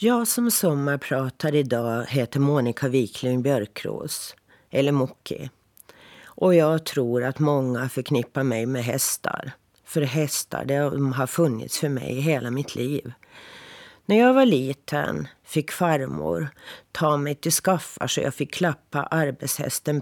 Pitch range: 130-160 Hz